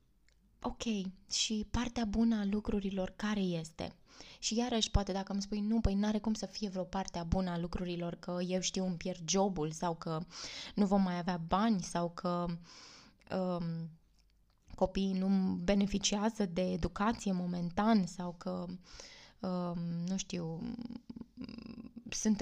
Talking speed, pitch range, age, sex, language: 140 wpm, 185-215 Hz, 20-39, female, Romanian